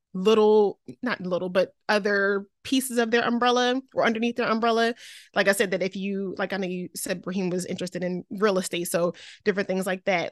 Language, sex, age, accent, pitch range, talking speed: English, female, 20-39, American, 185-225 Hz, 205 wpm